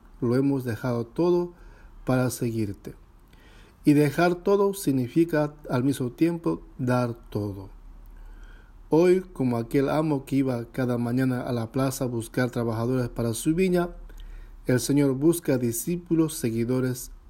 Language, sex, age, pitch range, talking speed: English, male, 50-69, 115-160 Hz, 130 wpm